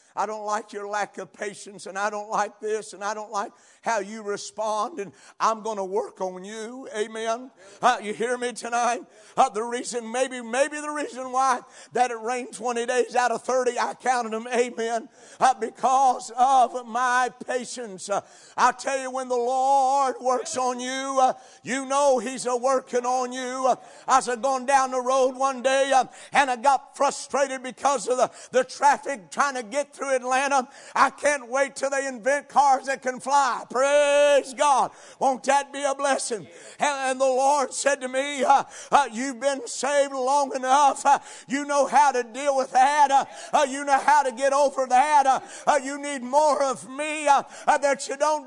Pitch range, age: 245-285 Hz, 60-79